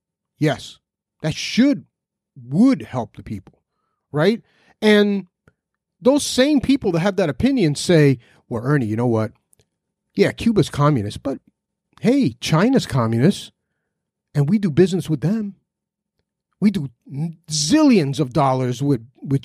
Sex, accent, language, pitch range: male, American, English, 140-205 Hz